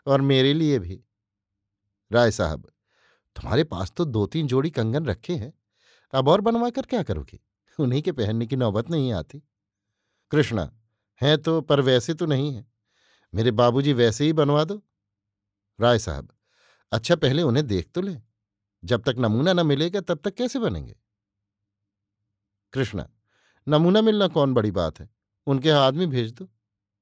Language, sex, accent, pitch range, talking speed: Hindi, male, native, 105-150 Hz, 155 wpm